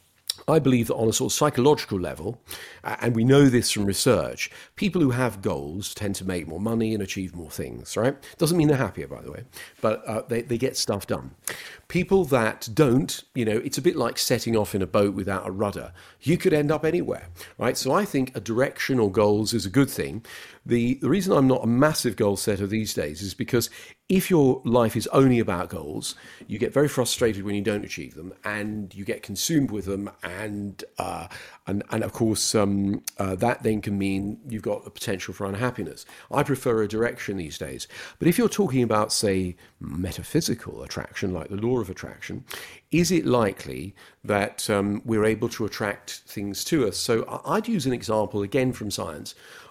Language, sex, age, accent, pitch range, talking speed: English, male, 40-59, British, 100-130 Hz, 205 wpm